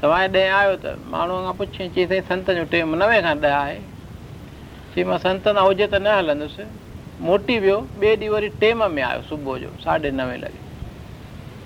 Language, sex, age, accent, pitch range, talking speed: Hindi, male, 60-79, native, 155-200 Hz, 135 wpm